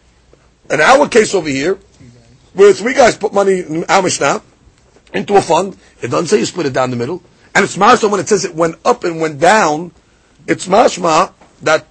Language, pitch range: English, 120-180 Hz